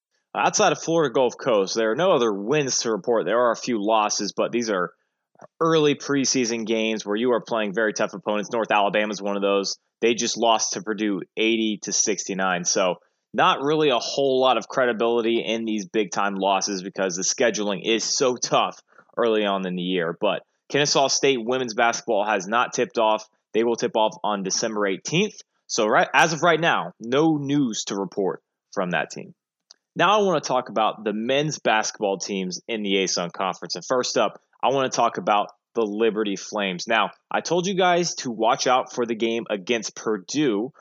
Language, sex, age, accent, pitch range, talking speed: English, male, 20-39, American, 105-130 Hz, 195 wpm